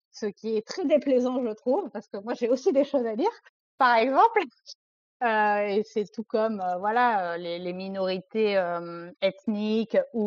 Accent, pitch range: French, 190-240 Hz